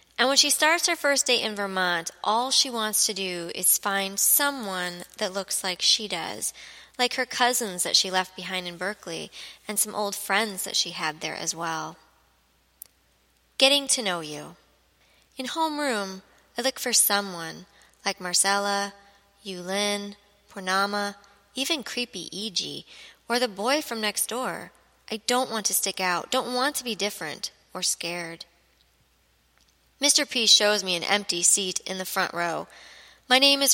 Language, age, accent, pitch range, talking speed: English, 20-39, American, 185-250 Hz, 160 wpm